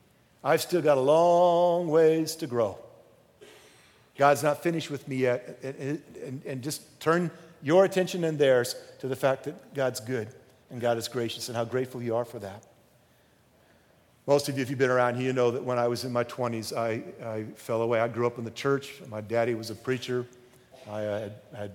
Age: 50-69